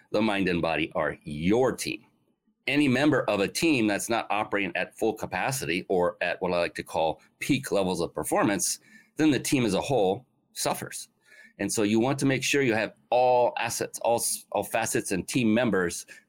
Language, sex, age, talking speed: English, male, 30-49, 195 wpm